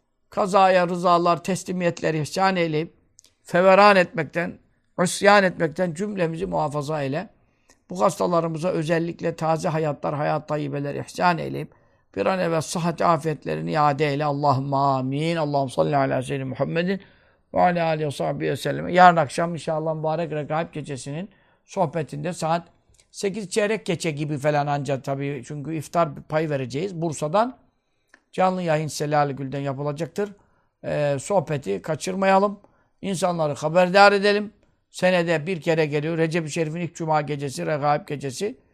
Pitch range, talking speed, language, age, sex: 150-180 Hz, 125 wpm, Turkish, 60-79, male